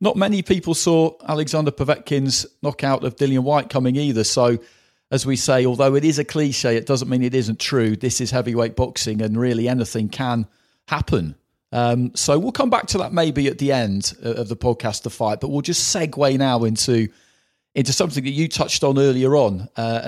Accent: British